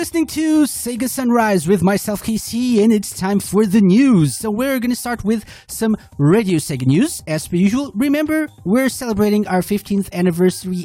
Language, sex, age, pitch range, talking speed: English, male, 30-49, 135-210 Hz, 170 wpm